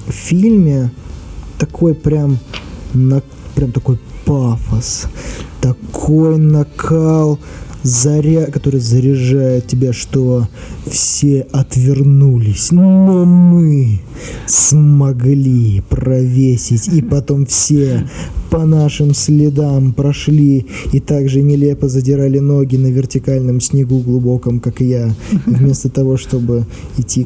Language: Russian